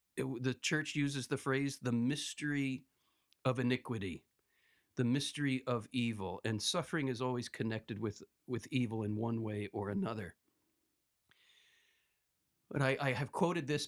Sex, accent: male, American